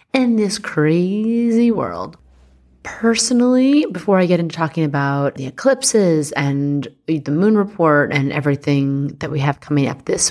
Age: 30-49